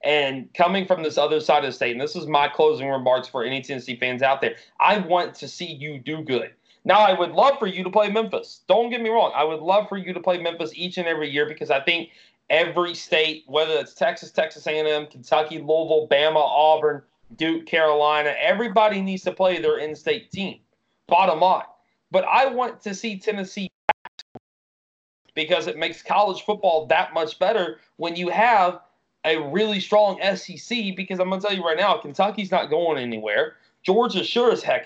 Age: 30-49